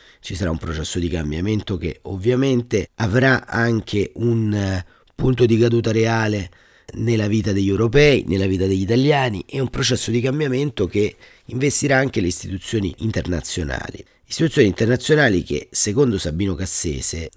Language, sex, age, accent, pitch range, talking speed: Italian, male, 40-59, native, 95-125 Hz, 140 wpm